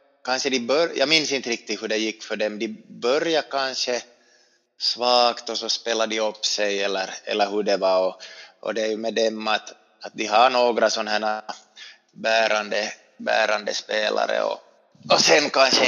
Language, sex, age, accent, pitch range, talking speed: Swedish, male, 30-49, Finnish, 100-115 Hz, 180 wpm